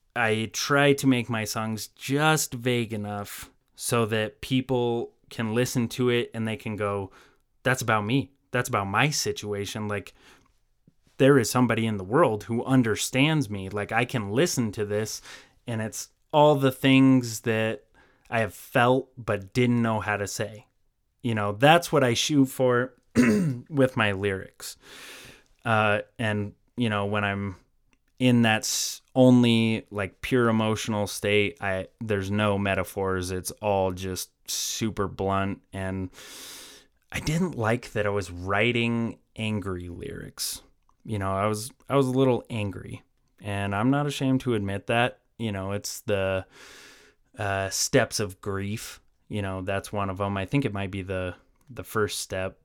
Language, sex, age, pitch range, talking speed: English, male, 20-39, 100-125 Hz, 160 wpm